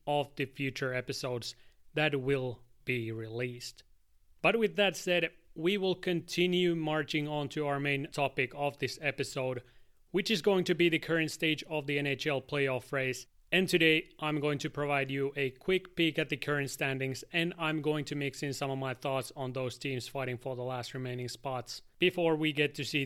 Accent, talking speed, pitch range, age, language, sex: Finnish, 195 wpm, 125-155 Hz, 30-49, English, male